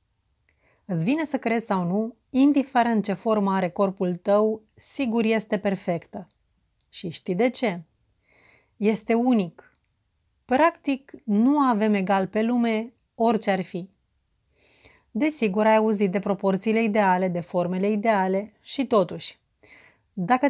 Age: 30-49